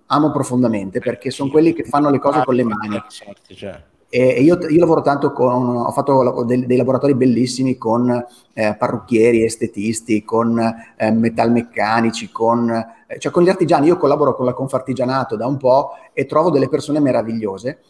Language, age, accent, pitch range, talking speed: Italian, 30-49, native, 120-165 Hz, 160 wpm